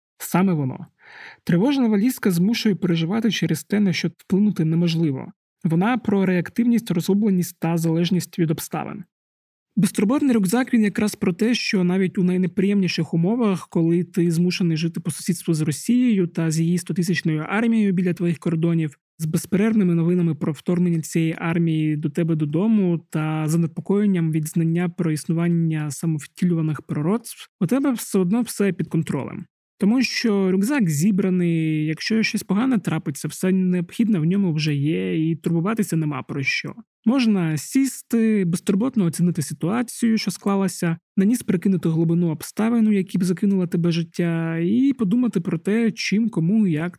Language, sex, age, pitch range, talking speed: Ukrainian, male, 20-39, 165-205 Hz, 145 wpm